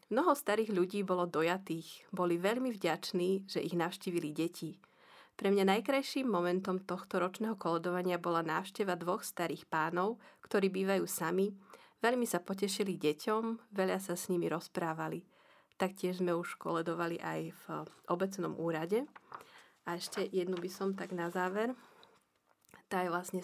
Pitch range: 170-205 Hz